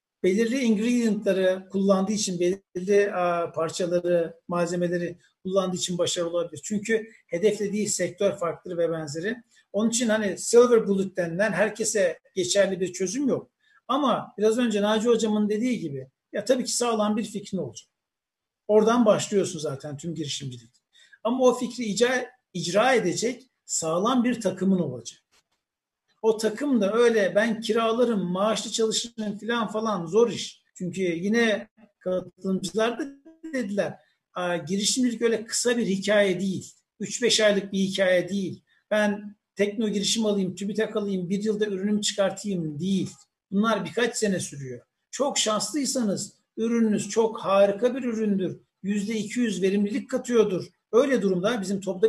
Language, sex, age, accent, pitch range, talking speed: Turkish, male, 60-79, native, 185-225 Hz, 130 wpm